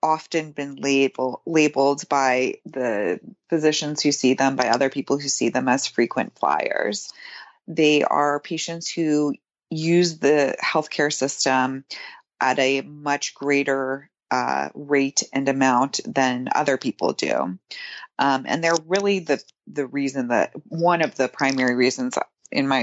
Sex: female